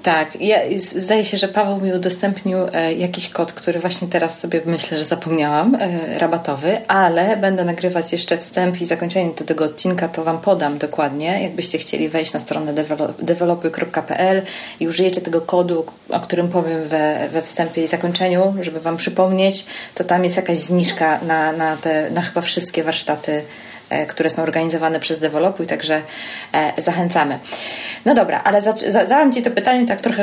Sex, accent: female, native